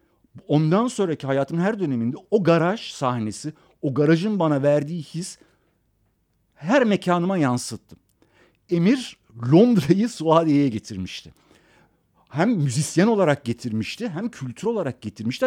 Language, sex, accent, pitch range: Turkish, male, native, 115-190 Hz